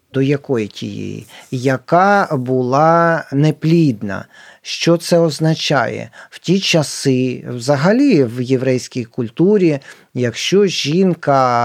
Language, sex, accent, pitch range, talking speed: Ukrainian, male, native, 135-170 Hz, 95 wpm